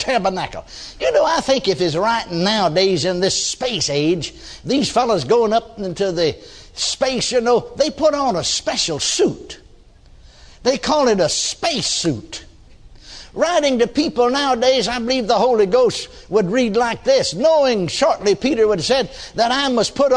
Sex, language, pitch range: male, English, 230-300 Hz